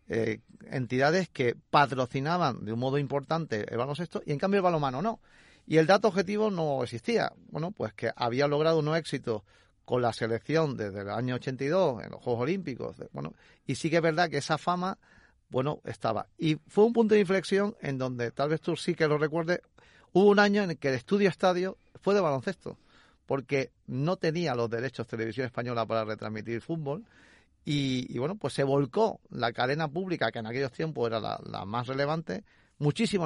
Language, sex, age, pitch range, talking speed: Spanish, male, 40-59, 120-175 Hz, 195 wpm